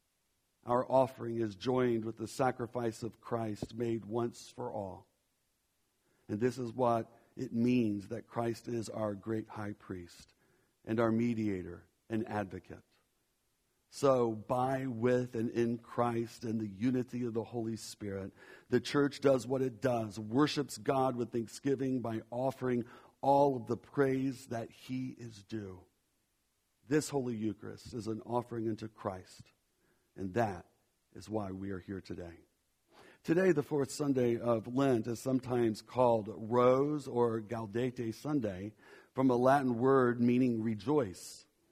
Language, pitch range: English, 110-135 Hz